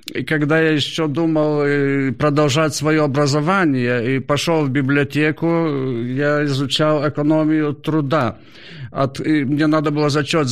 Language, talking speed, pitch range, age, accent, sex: Ukrainian, 115 wpm, 135-160 Hz, 50-69, native, male